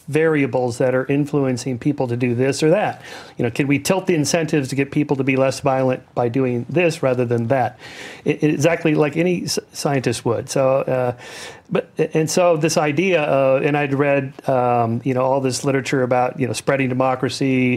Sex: male